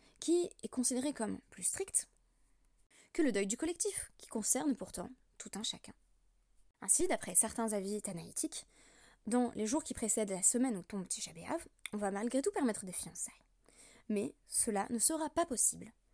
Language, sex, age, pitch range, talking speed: French, female, 20-39, 205-265 Hz, 165 wpm